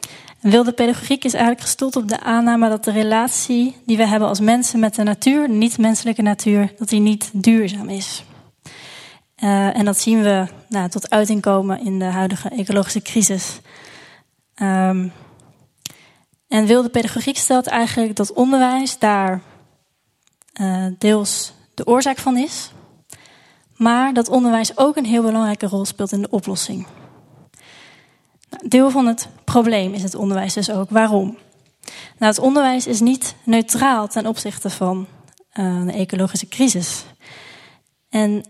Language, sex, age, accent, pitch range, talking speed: Dutch, female, 20-39, Dutch, 195-235 Hz, 140 wpm